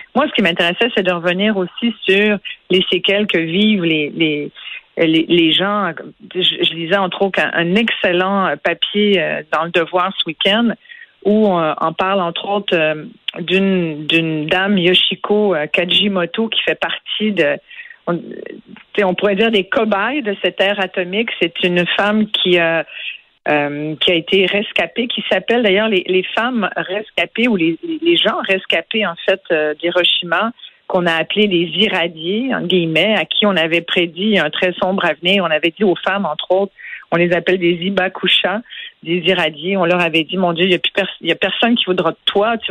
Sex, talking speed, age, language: female, 185 wpm, 40-59, French